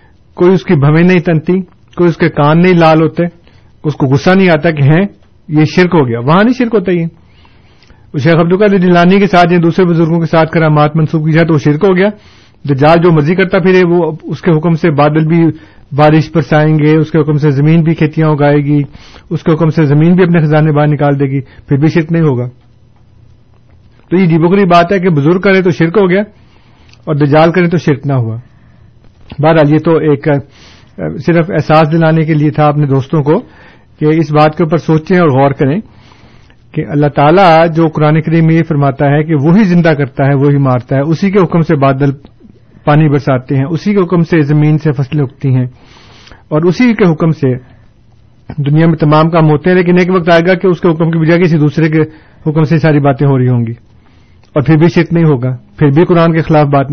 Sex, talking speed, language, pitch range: male, 225 wpm, Urdu, 140-170 Hz